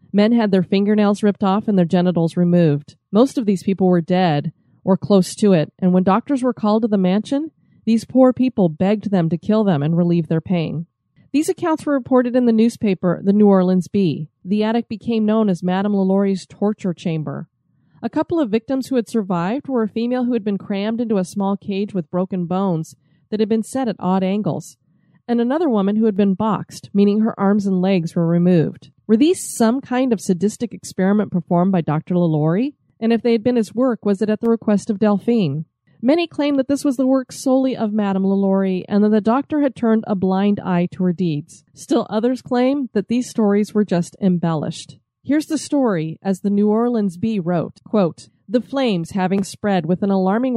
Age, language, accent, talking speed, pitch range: 30-49, English, American, 210 wpm, 180-230 Hz